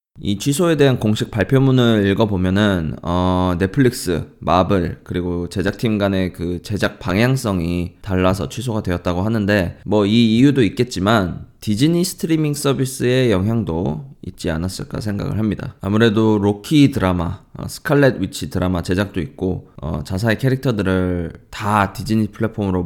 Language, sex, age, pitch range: Korean, male, 20-39, 95-125 Hz